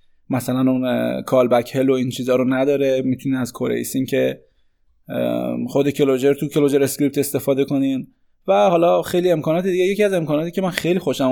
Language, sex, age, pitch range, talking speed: Persian, male, 20-39, 130-155 Hz, 175 wpm